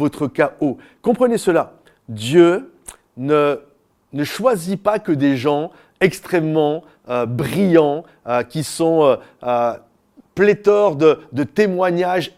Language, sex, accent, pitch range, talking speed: French, male, French, 140-180 Hz, 115 wpm